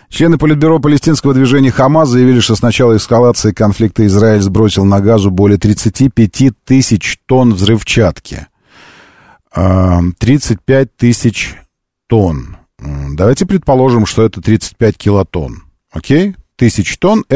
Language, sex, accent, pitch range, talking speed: Russian, male, native, 95-130 Hz, 120 wpm